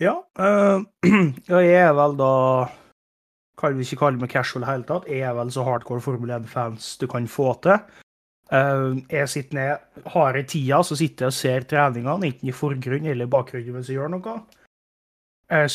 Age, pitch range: 20-39, 130-155 Hz